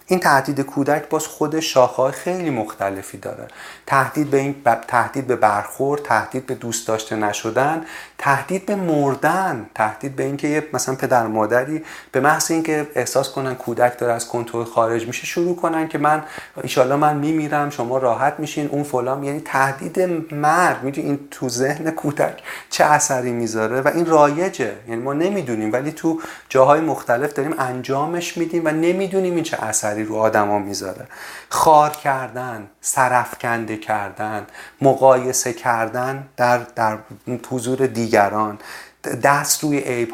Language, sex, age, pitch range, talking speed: Persian, male, 40-59, 115-145 Hz, 145 wpm